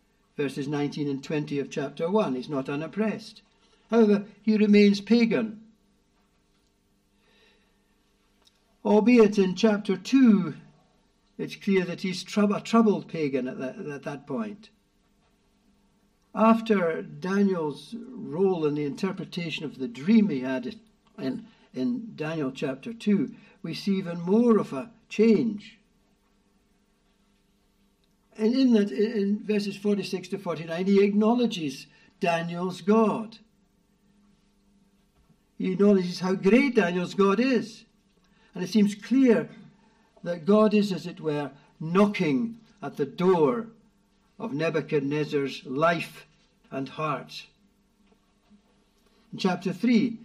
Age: 60-79